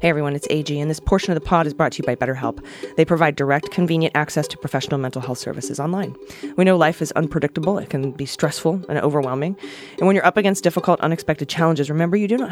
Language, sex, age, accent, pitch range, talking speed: English, female, 20-39, American, 135-175 Hz, 240 wpm